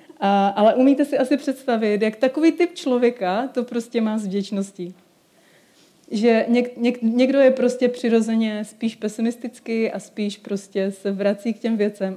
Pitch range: 200-250 Hz